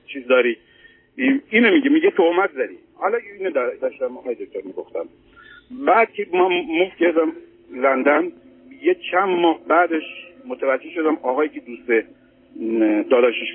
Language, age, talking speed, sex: Persian, 60-79, 135 wpm, male